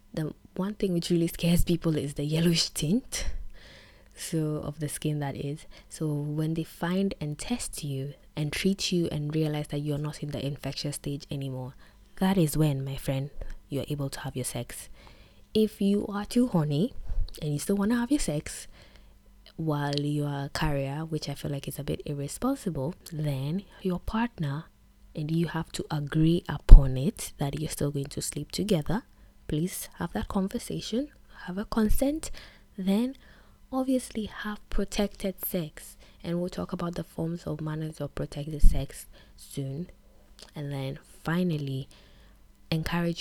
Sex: female